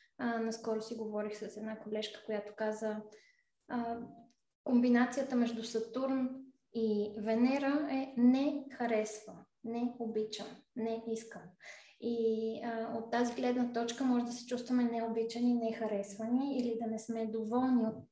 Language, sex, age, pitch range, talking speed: Bulgarian, female, 20-39, 220-250 Hz, 135 wpm